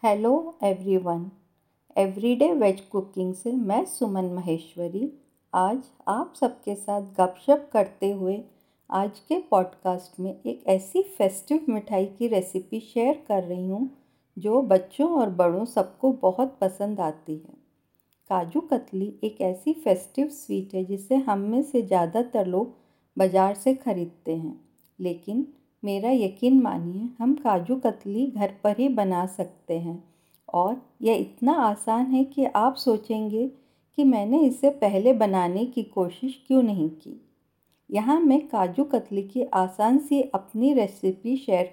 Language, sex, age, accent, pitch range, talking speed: Hindi, female, 50-69, native, 190-260 Hz, 140 wpm